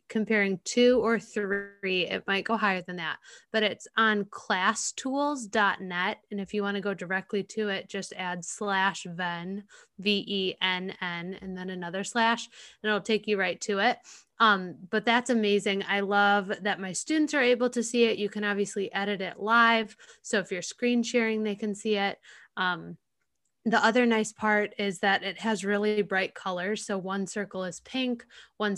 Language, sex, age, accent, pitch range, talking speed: English, female, 20-39, American, 190-215 Hz, 180 wpm